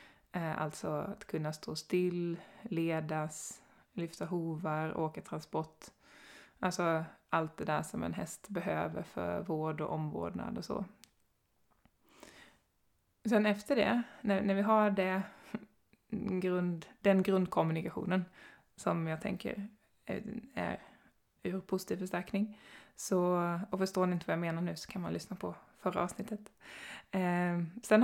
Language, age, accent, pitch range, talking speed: Swedish, 20-39, native, 170-200 Hz, 125 wpm